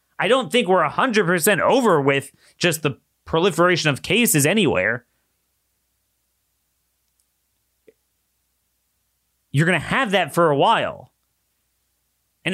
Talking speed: 105 wpm